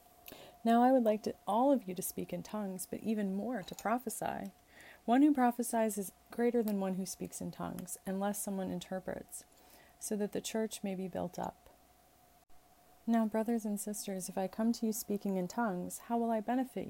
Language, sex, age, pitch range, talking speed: English, female, 30-49, 190-230 Hz, 190 wpm